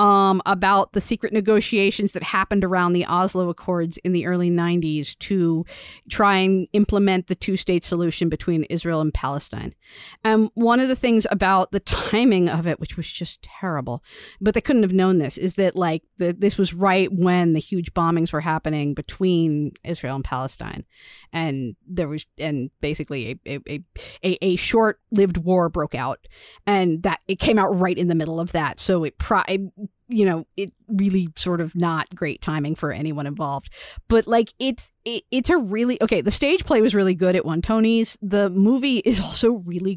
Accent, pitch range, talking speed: American, 170-215 Hz, 190 wpm